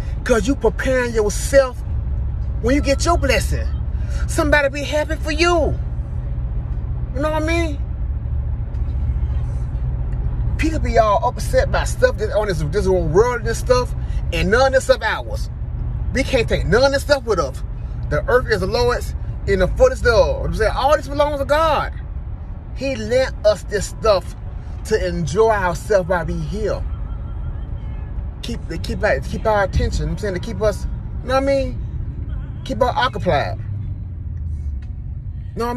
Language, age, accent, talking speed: English, 30-49, American, 155 wpm